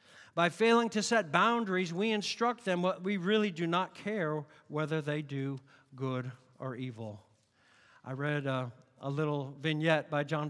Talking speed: 160 wpm